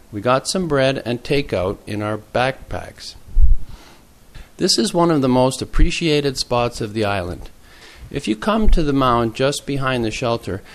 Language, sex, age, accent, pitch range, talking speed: English, male, 40-59, American, 105-145 Hz, 165 wpm